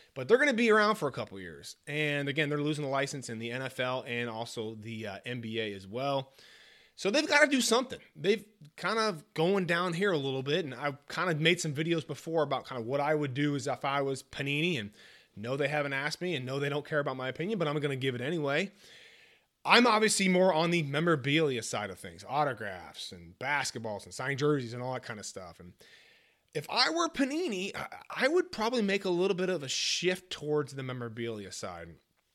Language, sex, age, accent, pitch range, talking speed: English, male, 30-49, American, 125-180 Hz, 225 wpm